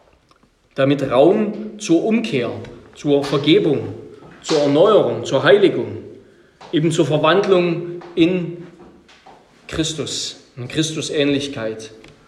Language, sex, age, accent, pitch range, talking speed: German, male, 40-59, German, 140-175 Hz, 85 wpm